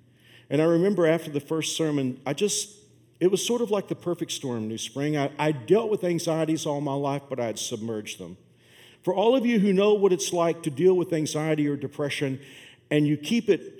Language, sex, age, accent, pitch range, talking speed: English, male, 50-69, American, 120-170 Hz, 220 wpm